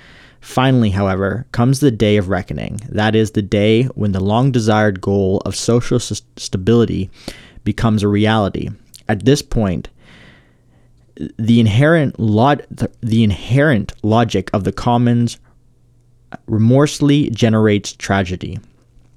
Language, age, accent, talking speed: English, 20-39, American, 115 wpm